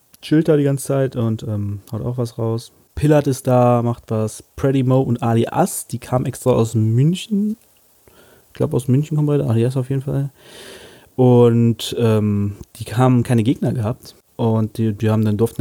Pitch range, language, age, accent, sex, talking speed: 110-135 Hz, German, 30-49, German, male, 190 wpm